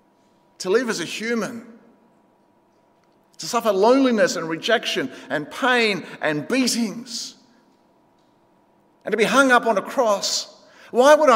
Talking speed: 125 wpm